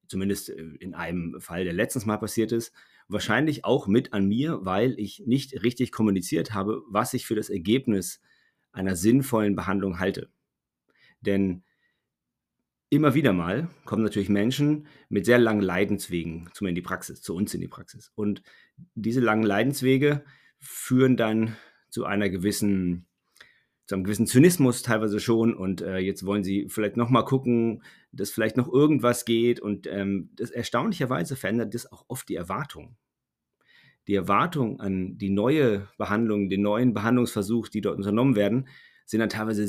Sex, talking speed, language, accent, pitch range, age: male, 155 wpm, German, German, 100-125 Hz, 40-59